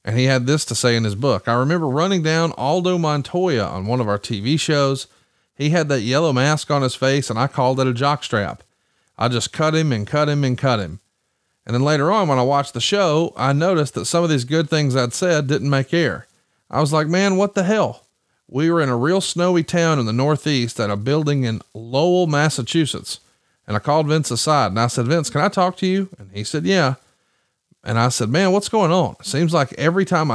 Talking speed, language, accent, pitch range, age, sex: 235 wpm, English, American, 125-165 Hz, 40-59, male